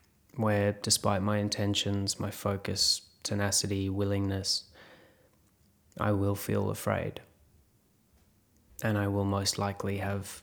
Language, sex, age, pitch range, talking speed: English, male, 20-39, 100-110 Hz, 105 wpm